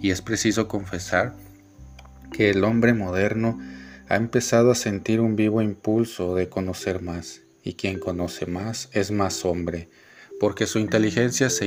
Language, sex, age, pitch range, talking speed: Spanish, male, 40-59, 90-110 Hz, 150 wpm